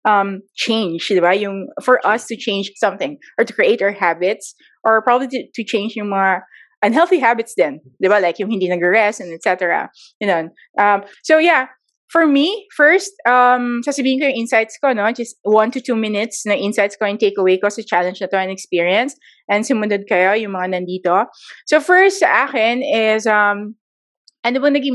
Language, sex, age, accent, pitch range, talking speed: English, female, 20-39, Filipino, 195-255 Hz, 185 wpm